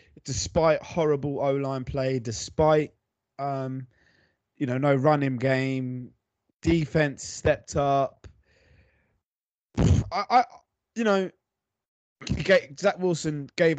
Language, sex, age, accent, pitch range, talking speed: English, male, 20-39, British, 125-160 Hz, 100 wpm